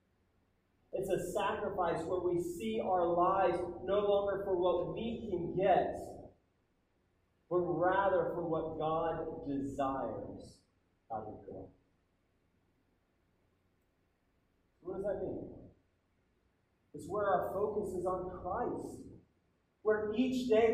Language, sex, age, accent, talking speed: English, male, 30-49, American, 110 wpm